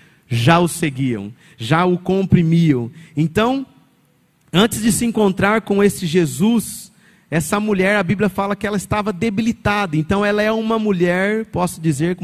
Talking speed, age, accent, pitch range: 150 wpm, 40-59, Brazilian, 155-195 Hz